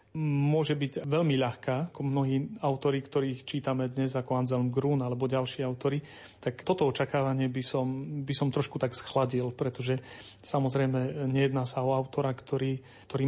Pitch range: 130-150 Hz